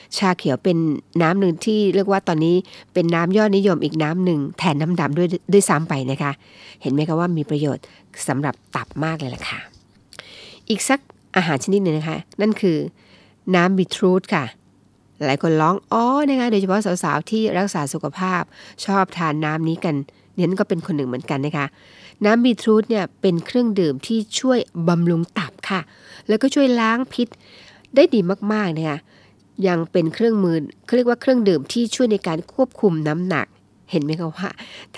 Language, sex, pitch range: Thai, female, 155-200 Hz